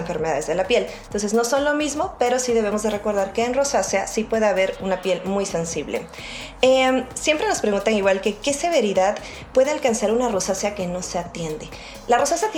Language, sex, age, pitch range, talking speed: Spanish, female, 30-49, 185-245 Hz, 200 wpm